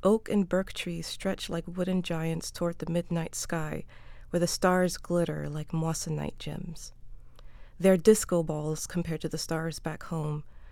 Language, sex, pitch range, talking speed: English, female, 150-175 Hz, 155 wpm